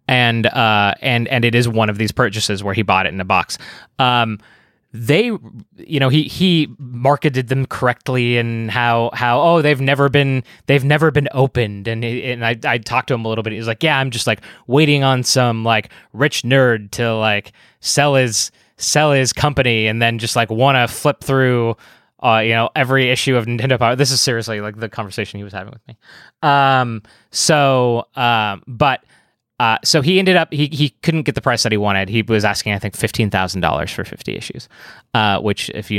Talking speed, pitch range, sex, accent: 210 wpm, 110-135 Hz, male, American